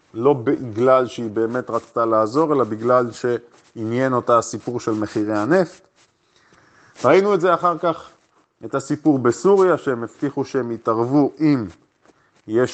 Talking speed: 130 wpm